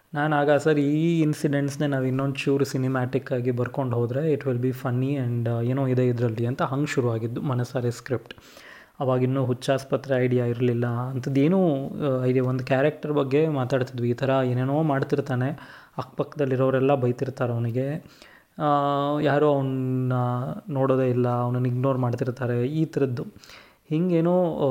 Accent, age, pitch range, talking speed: native, 20-39, 125-145 Hz, 130 wpm